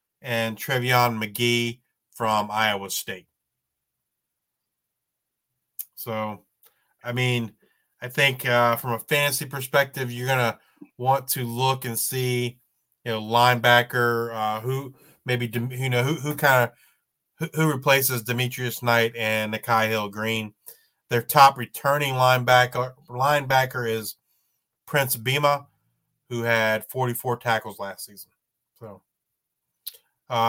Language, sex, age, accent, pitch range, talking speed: English, male, 30-49, American, 110-130 Hz, 115 wpm